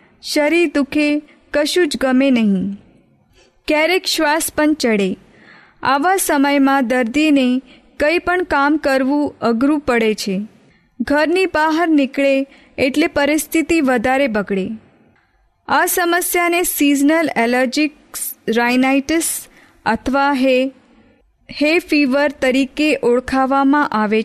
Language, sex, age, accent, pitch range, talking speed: Hindi, female, 20-39, native, 250-300 Hz, 95 wpm